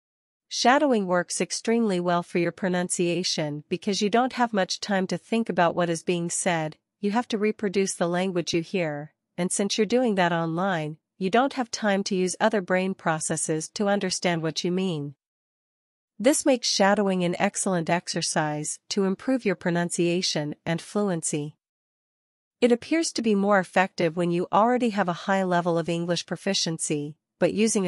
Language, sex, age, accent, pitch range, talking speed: Hindi, female, 40-59, American, 165-205 Hz, 170 wpm